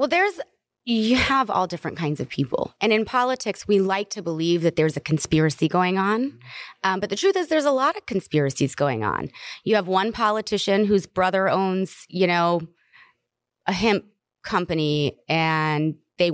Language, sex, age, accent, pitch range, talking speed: English, female, 20-39, American, 160-205 Hz, 175 wpm